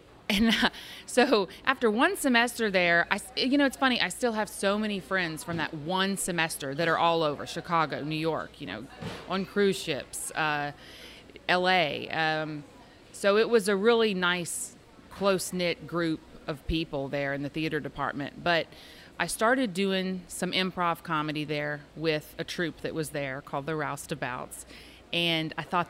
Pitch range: 160-200 Hz